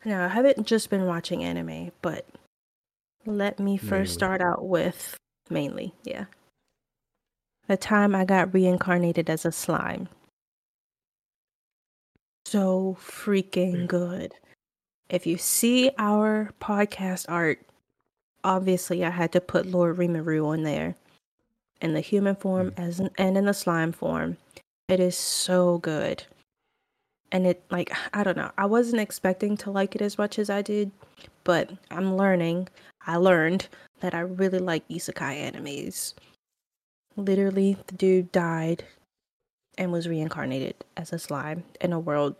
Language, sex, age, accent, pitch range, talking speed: English, female, 20-39, American, 170-200 Hz, 140 wpm